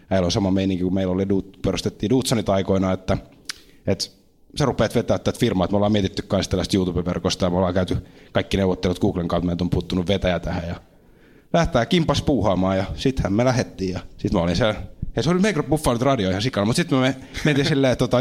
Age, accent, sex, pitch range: 30-49, native, male, 90-115 Hz